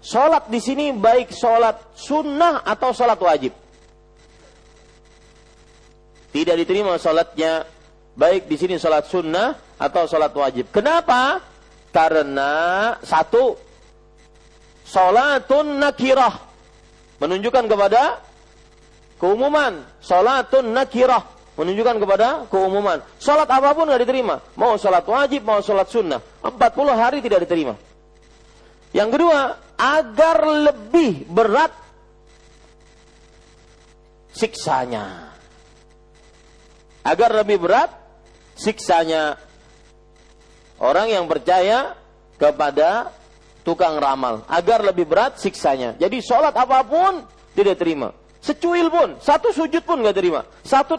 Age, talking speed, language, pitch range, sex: 40-59, 95 wpm, Malay, 180-290 Hz, male